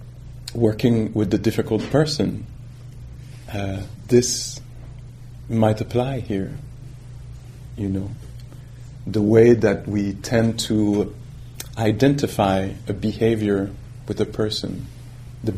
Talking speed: 95 wpm